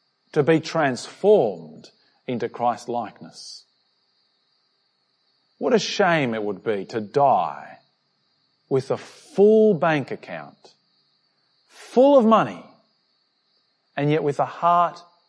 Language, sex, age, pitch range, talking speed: English, male, 40-59, 140-200 Hz, 100 wpm